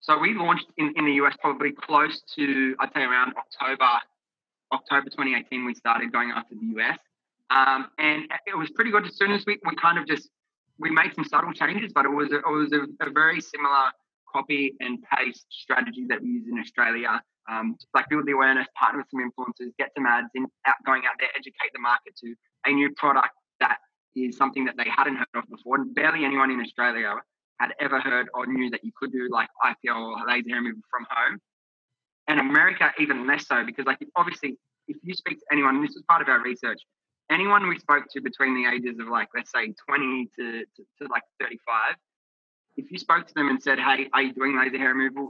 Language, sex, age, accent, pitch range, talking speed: English, male, 20-39, Australian, 125-155 Hz, 220 wpm